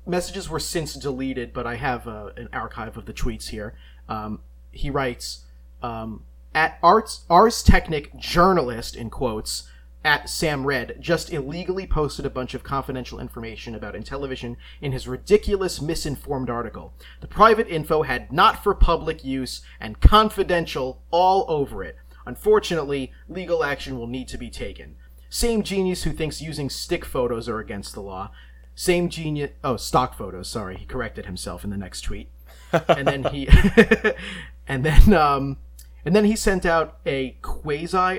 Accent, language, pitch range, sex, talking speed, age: American, English, 110-160 Hz, male, 155 wpm, 30-49